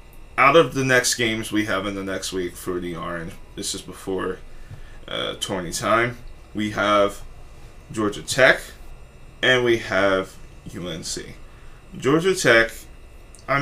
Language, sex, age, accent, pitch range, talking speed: English, male, 20-39, American, 100-125 Hz, 135 wpm